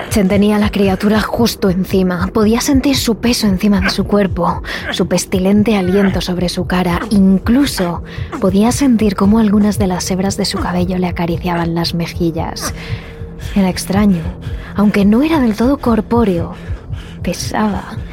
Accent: Spanish